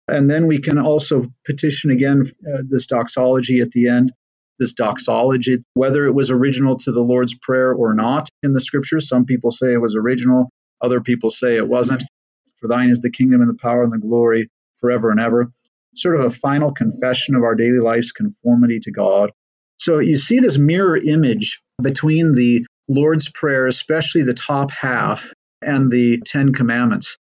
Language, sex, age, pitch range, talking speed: English, male, 40-59, 125-145 Hz, 180 wpm